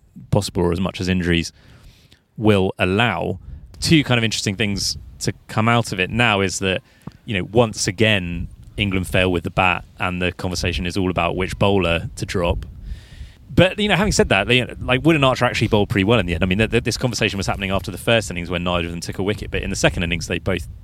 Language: English